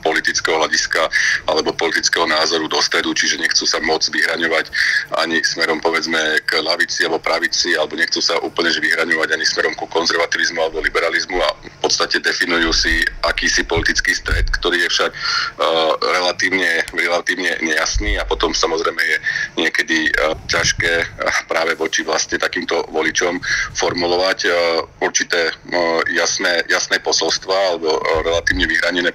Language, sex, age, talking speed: Slovak, male, 40-59, 145 wpm